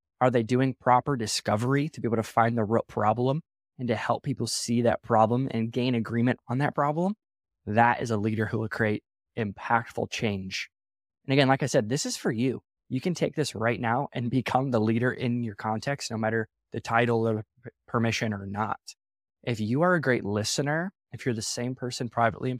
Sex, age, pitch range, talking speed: male, 20-39, 110-130 Hz, 205 wpm